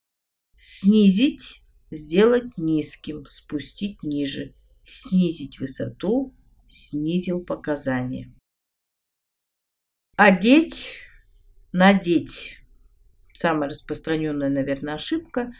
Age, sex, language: 50-69, female, Russian